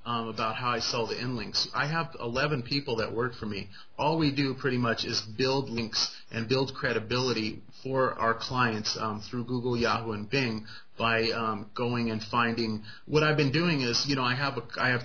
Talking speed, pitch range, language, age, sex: 205 wpm, 115-130 Hz, English, 30-49, male